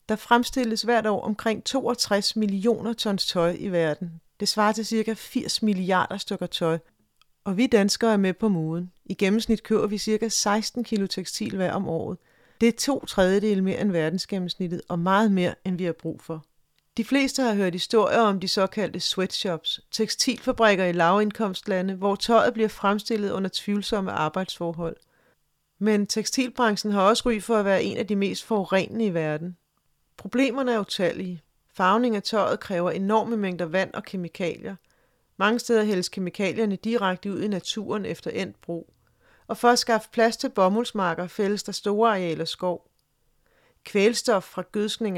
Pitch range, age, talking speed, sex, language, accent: 185-220 Hz, 40-59, 165 wpm, female, Danish, native